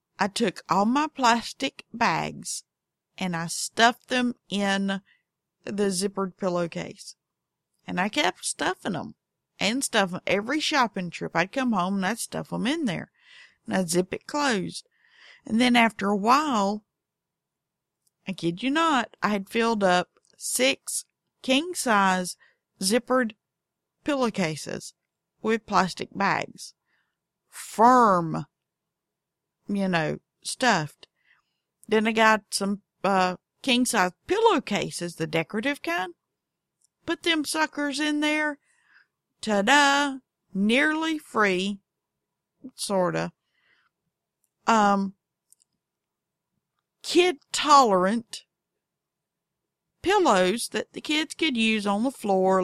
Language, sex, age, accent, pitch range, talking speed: English, female, 50-69, American, 190-260 Hz, 110 wpm